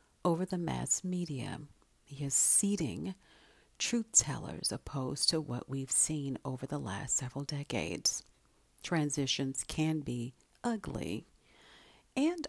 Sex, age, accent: female, 50-69, American